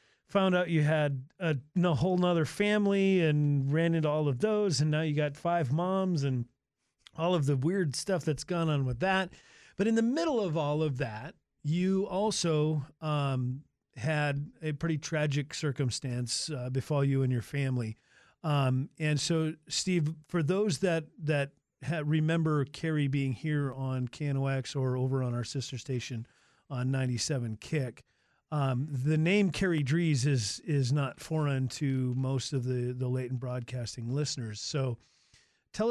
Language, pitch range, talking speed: English, 130-160 Hz, 165 wpm